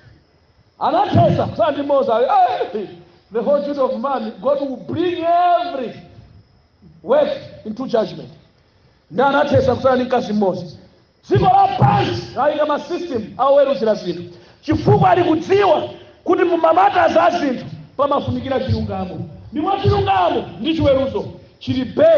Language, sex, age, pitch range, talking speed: English, male, 50-69, 220-295 Hz, 75 wpm